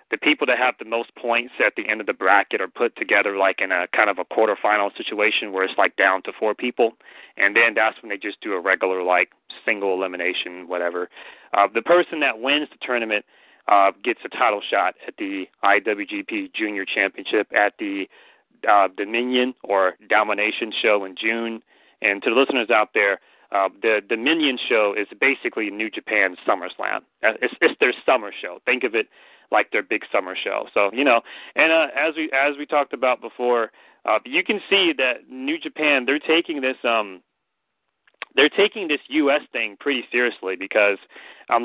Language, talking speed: English, 190 wpm